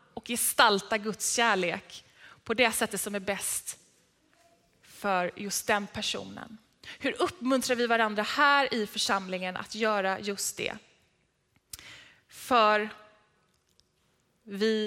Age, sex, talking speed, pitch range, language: 20-39, female, 110 wpm, 210-285 Hz, Swedish